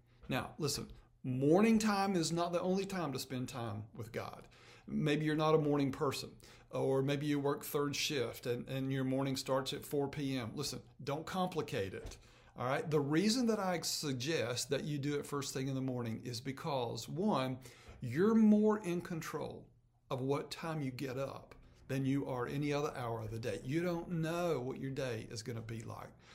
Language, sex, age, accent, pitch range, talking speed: English, male, 40-59, American, 125-165 Hz, 200 wpm